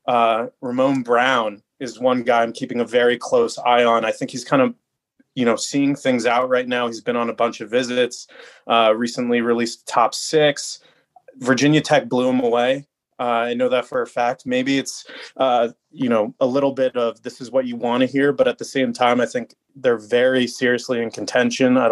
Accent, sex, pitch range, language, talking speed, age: American, male, 120-135 Hz, English, 215 wpm, 30-49